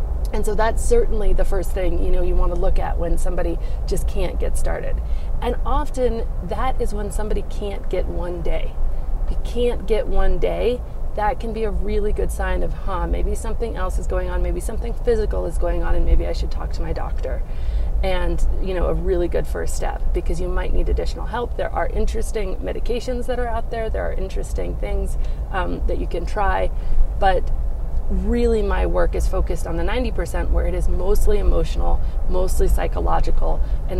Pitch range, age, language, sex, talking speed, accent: 175-240 Hz, 30-49, English, female, 200 wpm, American